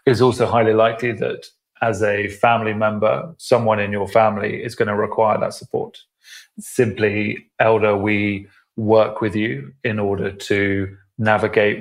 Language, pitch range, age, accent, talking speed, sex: English, 105-120 Hz, 30-49, British, 145 wpm, male